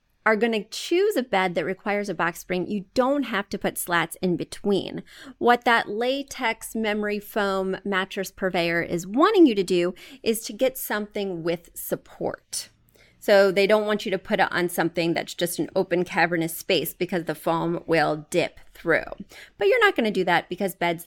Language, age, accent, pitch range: English, 30-49, American, 180-245 Hz